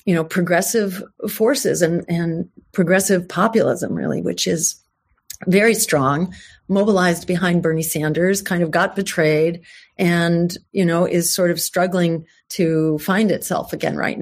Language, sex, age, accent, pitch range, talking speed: English, female, 40-59, American, 170-210 Hz, 140 wpm